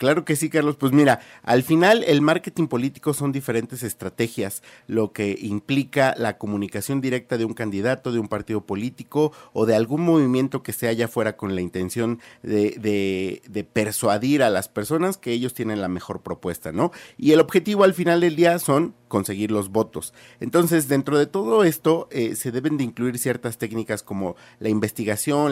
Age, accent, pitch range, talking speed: 50-69, Mexican, 110-145 Hz, 185 wpm